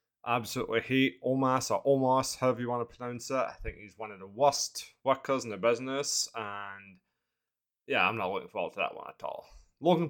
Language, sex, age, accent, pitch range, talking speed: English, male, 20-39, British, 105-135 Hz, 200 wpm